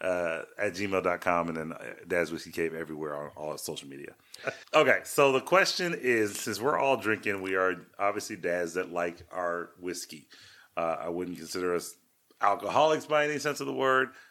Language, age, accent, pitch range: English, 30-49, American, 85-110 Hz